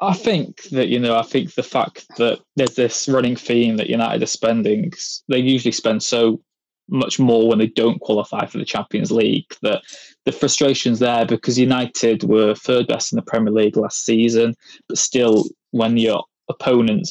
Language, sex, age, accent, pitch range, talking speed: English, male, 20-39, British, 115-135 Hz, 180 wpm